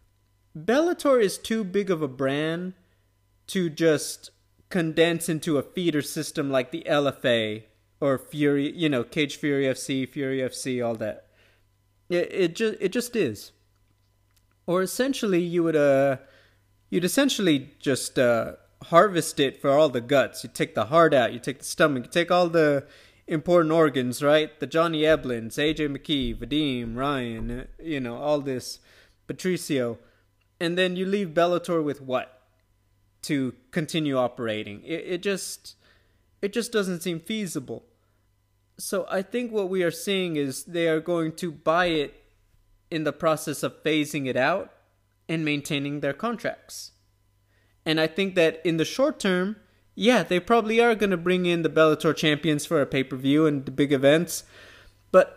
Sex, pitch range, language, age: male, 120-175 Hz, English, 30-49